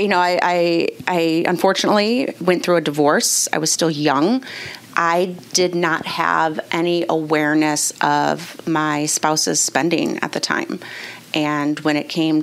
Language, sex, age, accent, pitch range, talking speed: English, female, 30-49, American, 155-180 Hz, 150 wpm